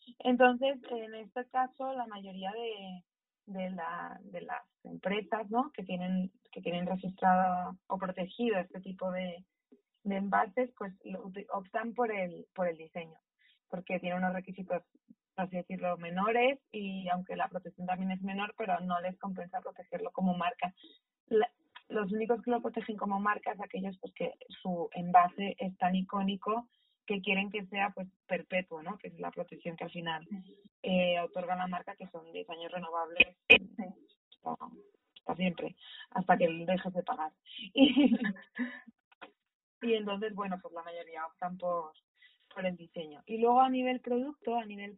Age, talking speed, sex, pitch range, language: 20-39, 160 wpm, female, 180-245 Hz, Spanish